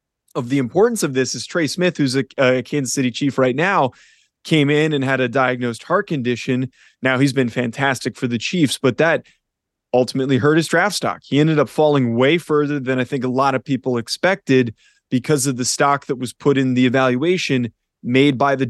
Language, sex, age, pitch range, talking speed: English, male, 20-39, 125-145 Hz, 210 wpm